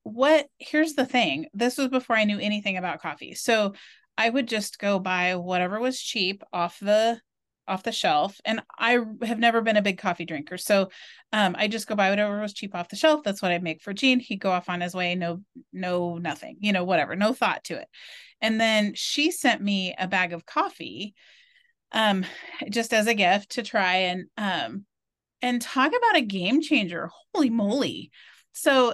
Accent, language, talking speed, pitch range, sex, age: American, English, 200 wpm, 195-255 Hz, female, 30-49